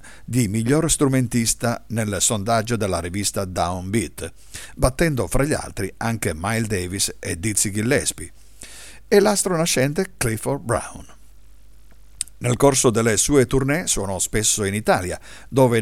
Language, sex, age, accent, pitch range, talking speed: Italian, male, 50-69, native, 95-130 Hz, 120 wpm